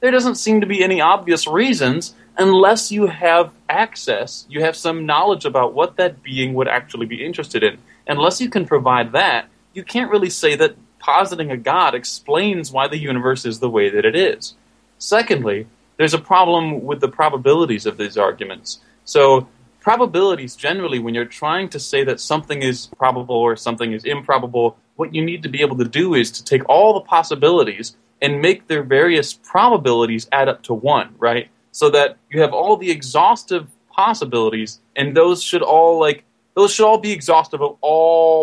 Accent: American